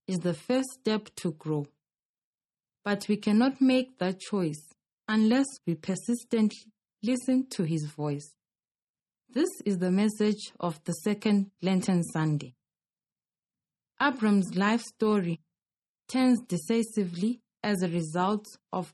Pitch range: 175-225 Hz